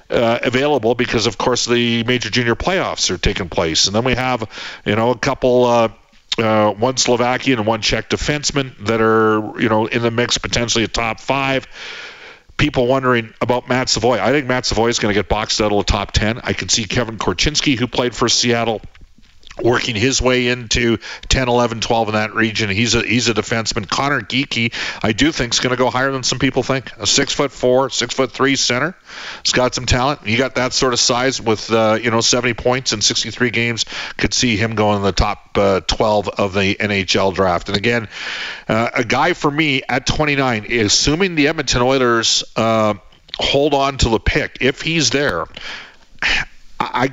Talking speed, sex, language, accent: 200 wpm, male, English, American